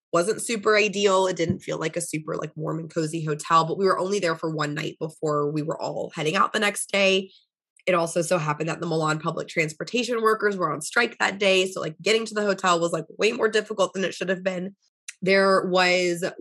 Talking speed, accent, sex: 235 wpm, American, female